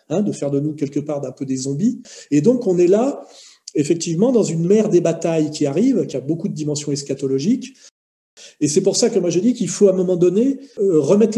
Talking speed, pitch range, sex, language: 245 wpm, 155-205 Hz, male, French